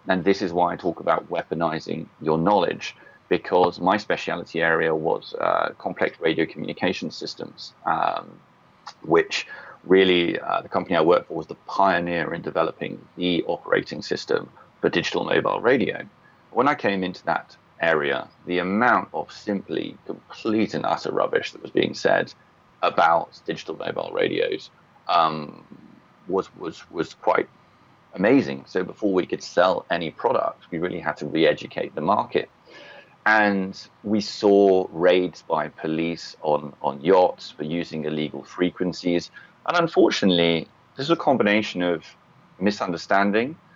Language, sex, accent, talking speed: English, male, British, 145 wpm